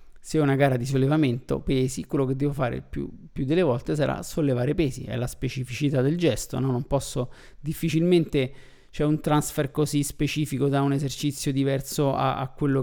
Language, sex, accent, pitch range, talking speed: Italian, male, native, 130-170 Hz, 180 wpm